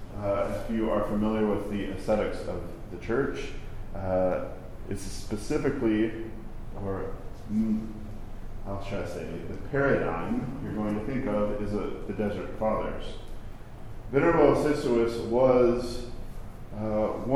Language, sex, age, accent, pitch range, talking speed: English, male, 40-59, American, 100-115 Hz, 125 wpm